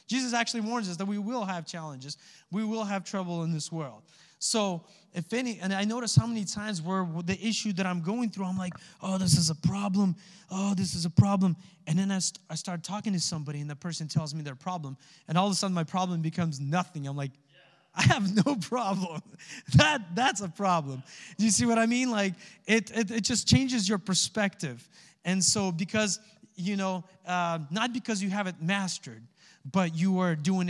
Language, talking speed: English, 215 wpm